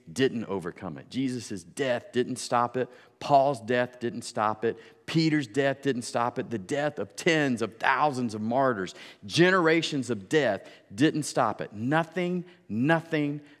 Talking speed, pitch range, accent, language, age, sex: 150 wpm, 105-145 Hz, American, English, 40-59, male